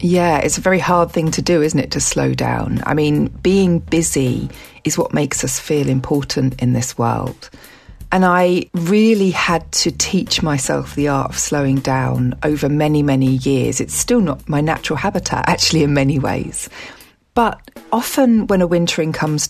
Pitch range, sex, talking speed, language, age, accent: 135-180 Hz, female, 180 wpm, English, 40-59, British